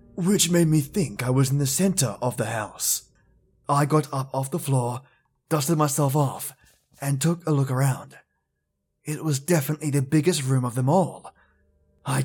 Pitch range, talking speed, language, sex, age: 115-145 Hz, 175 wpm, English, male, 20-39